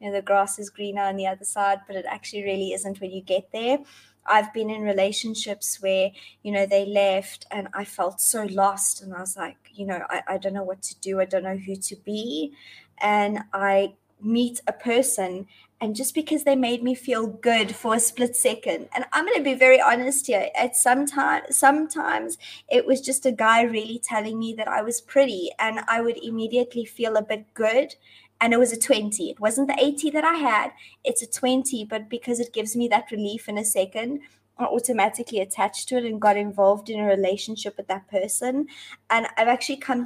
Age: 20-39